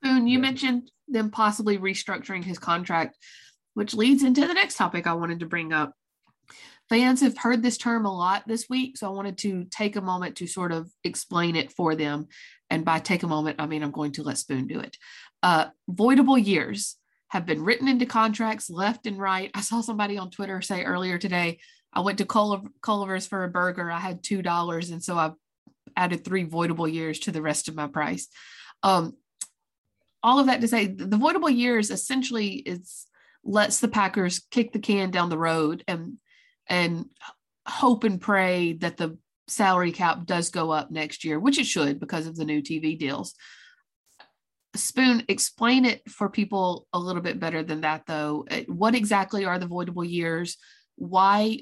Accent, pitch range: American, 165-220 Hz